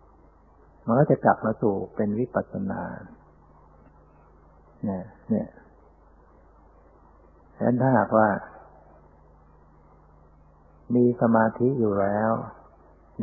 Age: 60-79